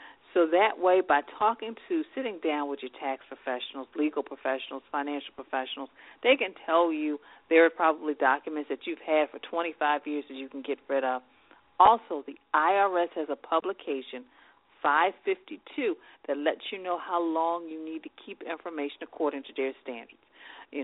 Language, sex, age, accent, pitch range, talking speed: English, female, 50-69, American, 140-175 Hz, 170 wpm